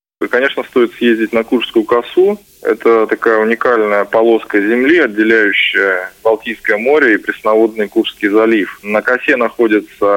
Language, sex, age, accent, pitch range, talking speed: Russian, male, 20-39, native, 110-155 Hz, 125 wpm